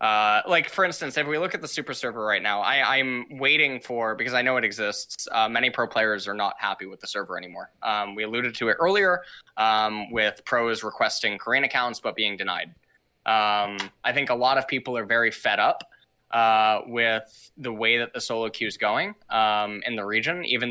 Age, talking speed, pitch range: 10-29, 210 wpm, 110-135 Hz